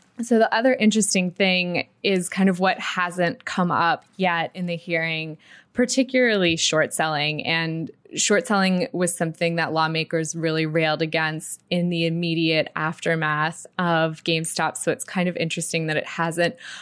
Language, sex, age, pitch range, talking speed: English, female, 20-39, 160-185 Hz, 145 wpm